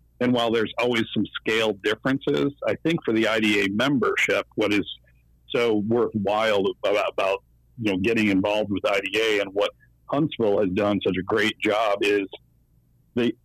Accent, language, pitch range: American, English, 100-120 Hz